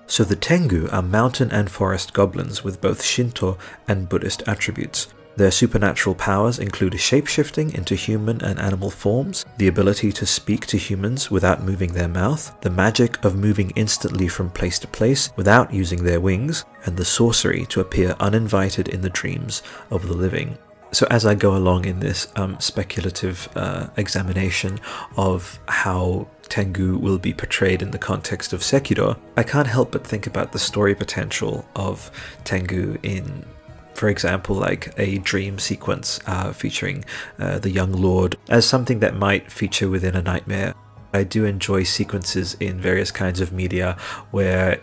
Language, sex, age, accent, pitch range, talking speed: English, male, 30-49, British, 95-110 Hz, 165 wpm